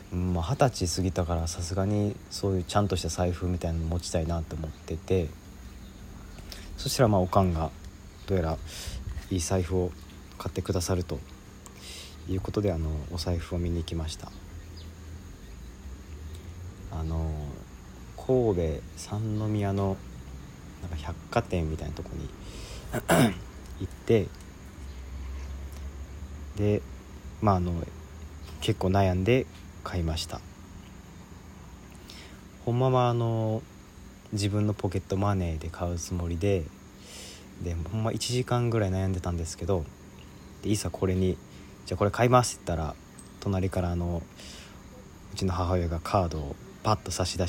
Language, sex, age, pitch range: Japanese, male, 40-59, 80-95 Hz